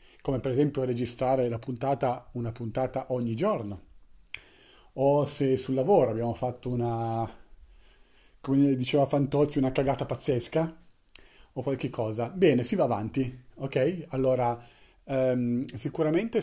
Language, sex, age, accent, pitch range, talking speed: Italian, male, 40-59, native, 125-155 Hz, 125 wpm